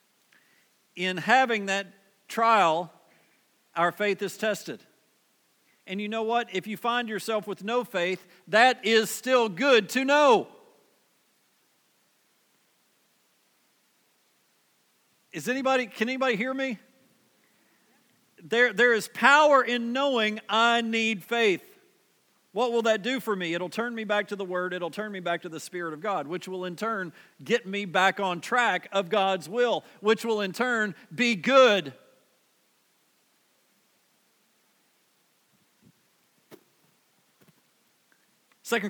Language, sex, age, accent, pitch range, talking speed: English, male, 50-69, American, 180-235 Hz, 125 wpm